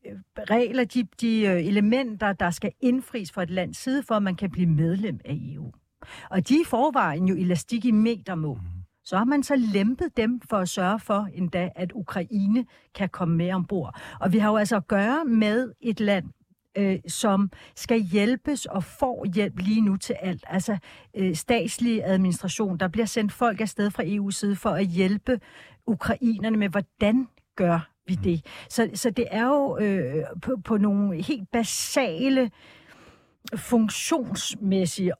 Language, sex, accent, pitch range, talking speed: Danish, female, native, 180-235 Hz, 160 wpm